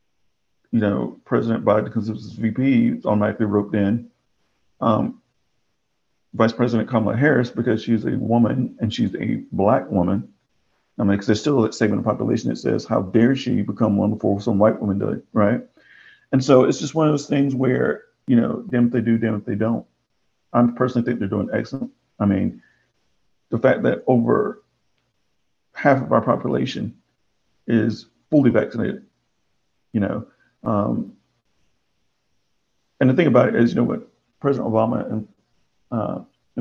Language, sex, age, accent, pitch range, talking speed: English, male, 50-69, American, 110-125 Hz, 165 wpm